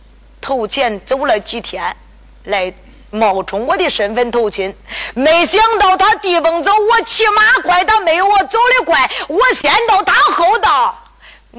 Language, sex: Chinese, female